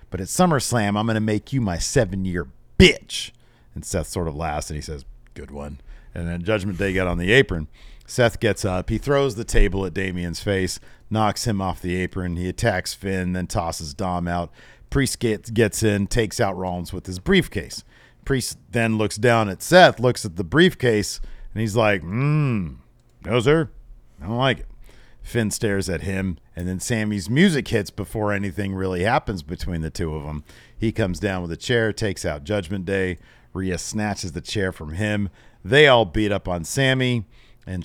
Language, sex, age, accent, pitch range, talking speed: English, male, 40-59, American, 90-115 Hz, 190 wpm